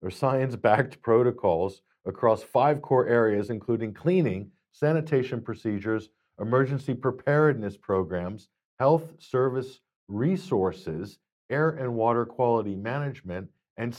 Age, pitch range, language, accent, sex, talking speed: 50-69, 95-135 Hz, English, American, male, 105 wpm